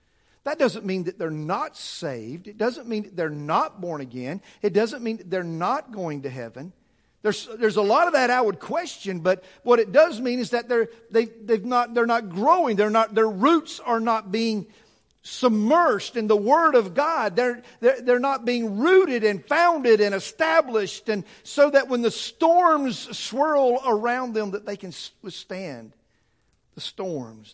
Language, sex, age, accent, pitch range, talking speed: English, male, 50-69, American, 190-260 Hz, 185 wpm